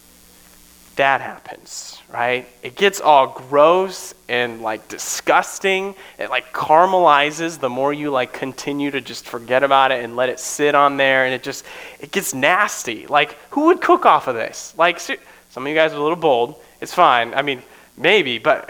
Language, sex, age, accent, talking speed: English, male, 20-39, American, 185 wpm